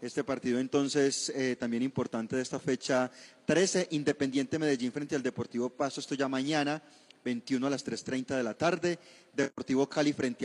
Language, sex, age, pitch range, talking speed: Spanish, male, 30-49, 130-150 Hz, 165 wpm